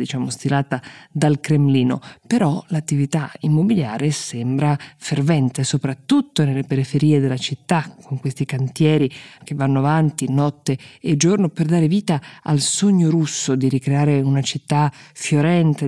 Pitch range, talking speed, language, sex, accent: 135-160 Hz, 130 wpm, Italian, female, native